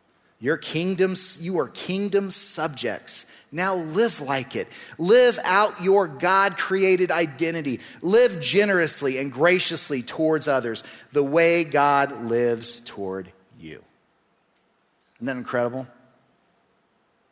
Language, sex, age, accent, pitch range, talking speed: English, male, 40-59, American, 115-160 Hz, 105 wpm